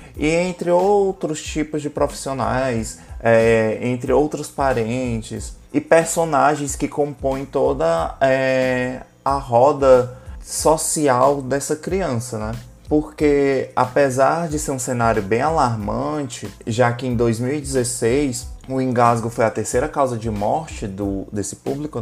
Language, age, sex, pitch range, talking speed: Portuguese, 20-39, male, 115-150 Hz, 115 wpm